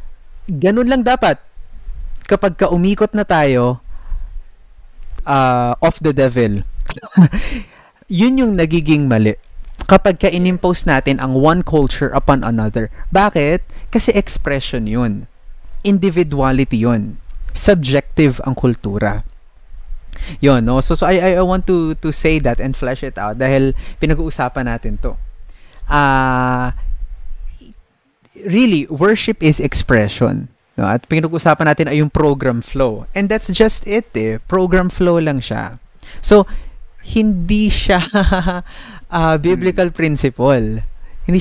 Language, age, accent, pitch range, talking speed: Filipino, 20-39, native, 115-185 Hz, 120 wpm